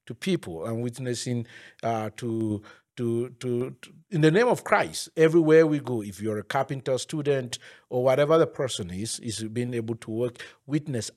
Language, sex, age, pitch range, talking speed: English, male, 50-69, 115-150 Hz, 175 wpm